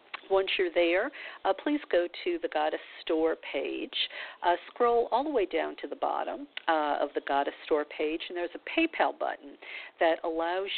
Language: English